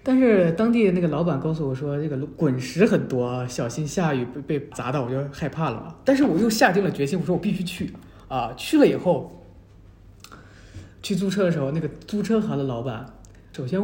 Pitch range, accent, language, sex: 130-190 Hz, native, Chinese, male